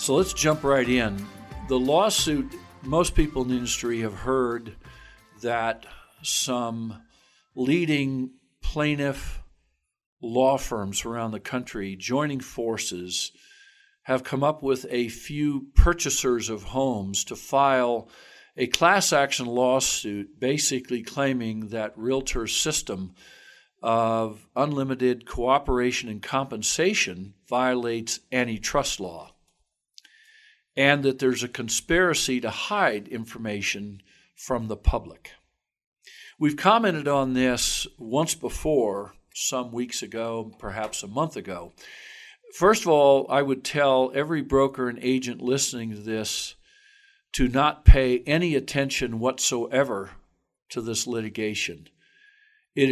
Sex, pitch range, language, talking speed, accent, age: male, 115-140 Hz, English, 115 wpm, American, 60-79